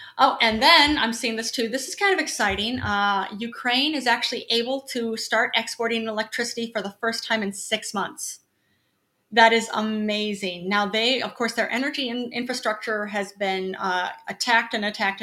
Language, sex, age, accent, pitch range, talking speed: English, female, 30-49, American, 195-230 Hz, 175 wpm